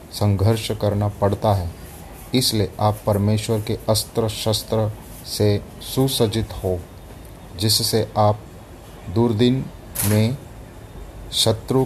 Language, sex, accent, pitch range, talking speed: Hindi, male, native, 100-120 Hz, 95 wpm